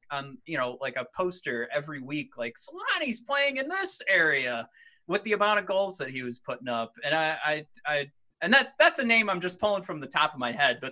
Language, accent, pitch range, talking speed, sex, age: English, American, 130-190 Hz, 235 wpm, male, 30-49